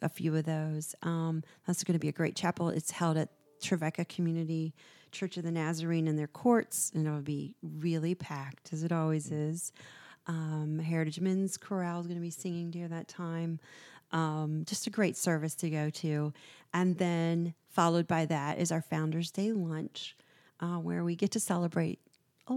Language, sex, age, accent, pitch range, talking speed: English, female, 40-59, American, 165-200 Hz, 185 wpm